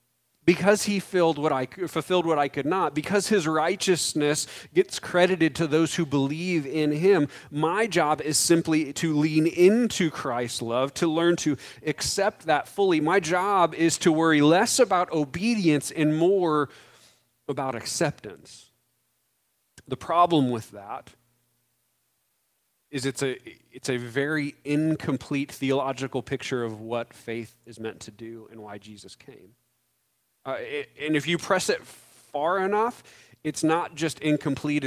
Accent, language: American, English